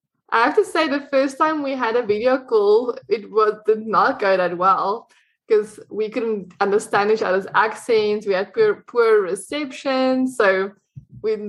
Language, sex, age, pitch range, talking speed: English, female, 10-29, 200-275 Hz, 170 wpm